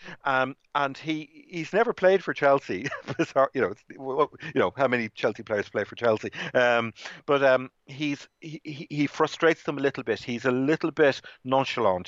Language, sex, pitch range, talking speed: English, male, 110-140 Hz, 175 wpm